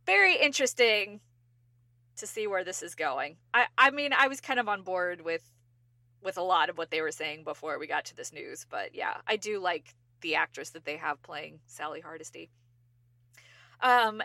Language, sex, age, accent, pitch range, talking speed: English, female, 20-39, American, 165-240 Hz, 195 wpm